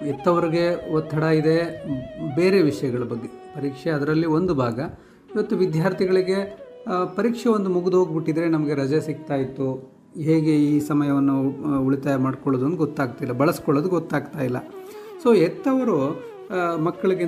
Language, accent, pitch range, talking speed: Kannada, native, 140-190 Hz, 115 wpm